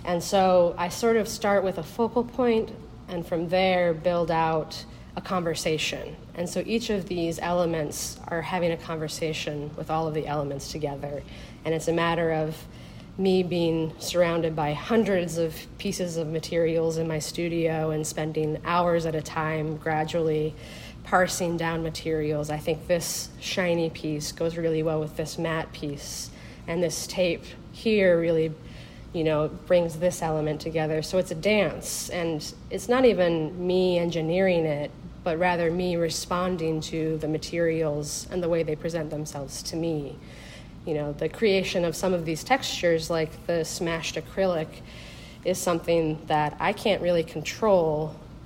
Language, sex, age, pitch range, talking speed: English, female, 40-59, 155-175 Hz, 160 wpm